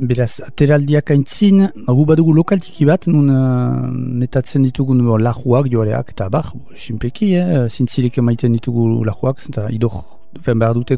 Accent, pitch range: French, 120-150 Hz